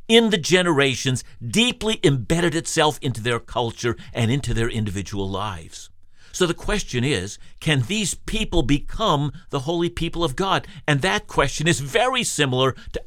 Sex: male